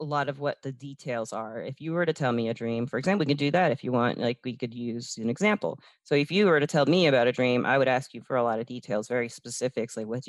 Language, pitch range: English, 115-150 Hz